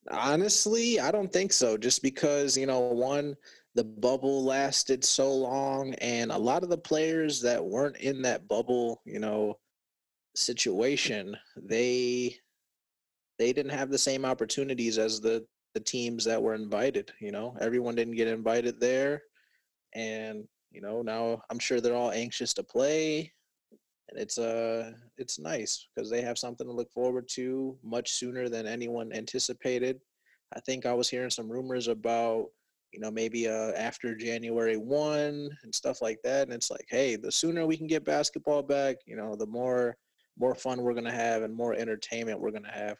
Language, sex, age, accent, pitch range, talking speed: English, male, 30-49, American, 115-135 Hz, 175 wpm